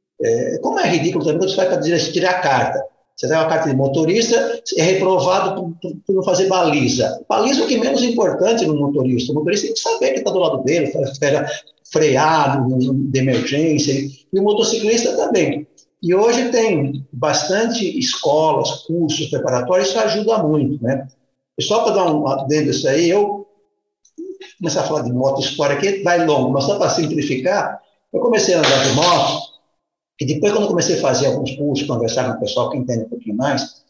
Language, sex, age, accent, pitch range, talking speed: Portuguese, male, 60-79, Brazilian, 150-240 Hz, 190 wpm